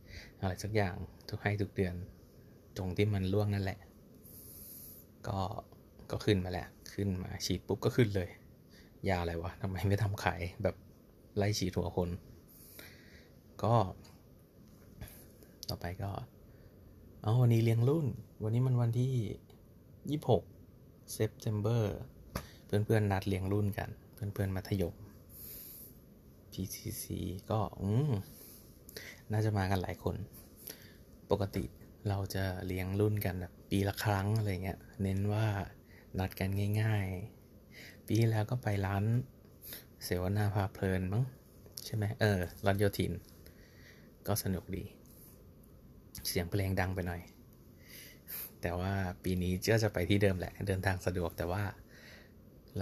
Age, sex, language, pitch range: 20-39, male, Thai, 95-110 Hz